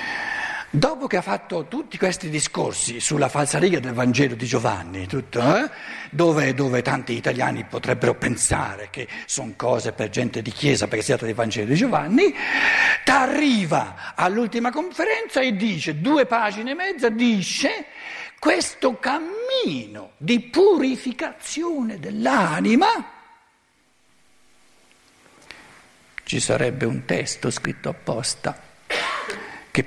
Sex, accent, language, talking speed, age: male, native, Italian, 115 wpm, 60-79